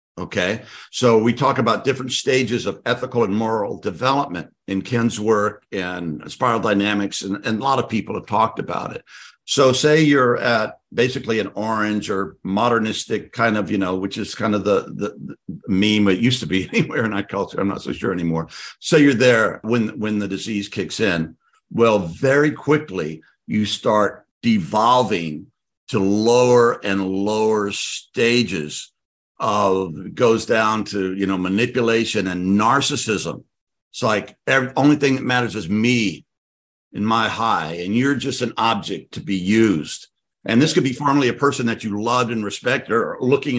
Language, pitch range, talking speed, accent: English, 100-125 Hz, 170 wpm, American